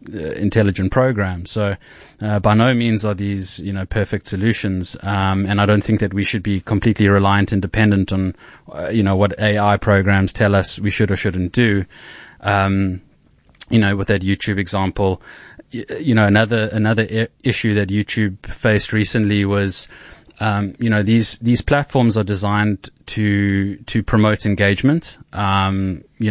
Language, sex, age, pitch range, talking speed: English, male, 20-39, 100-110 Hz, 165 wpm